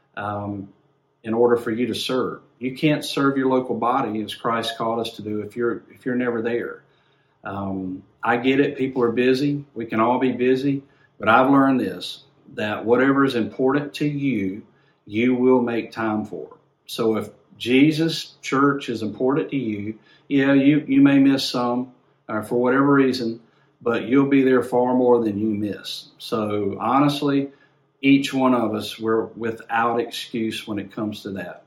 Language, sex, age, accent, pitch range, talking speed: English, male, 50-69, American, 115-140 Hz, 175 wpm